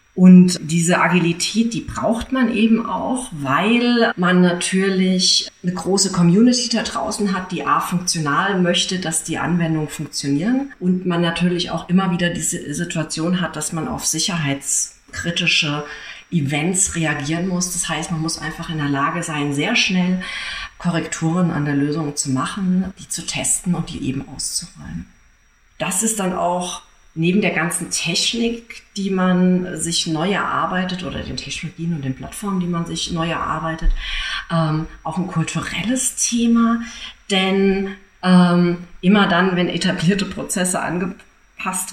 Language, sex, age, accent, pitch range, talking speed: German, female, 40-59, German, 160-190 Hz, 145 wpm